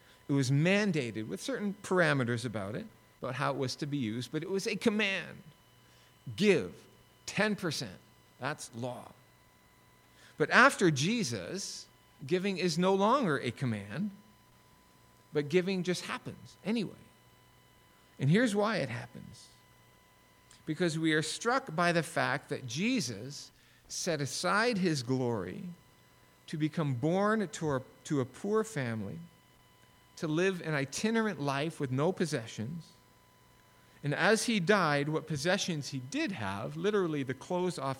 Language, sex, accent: English, male, American